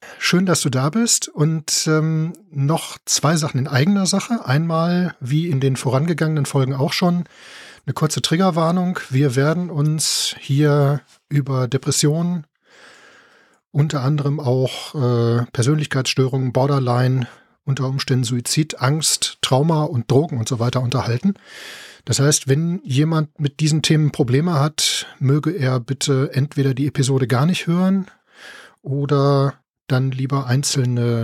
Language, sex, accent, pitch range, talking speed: German, male, German, 130-155 Hz, 135 wpm